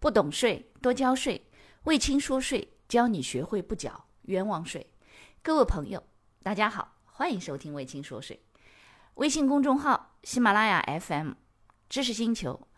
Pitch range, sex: 180-280 Hz, female